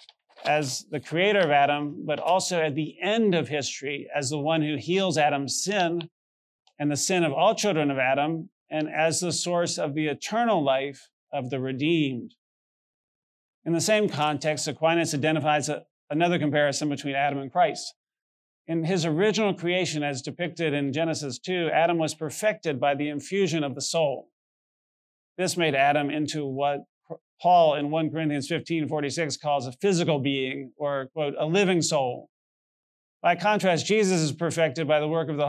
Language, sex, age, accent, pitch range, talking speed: English, male, 40-59, American, 145-170 Hz, 165 wpm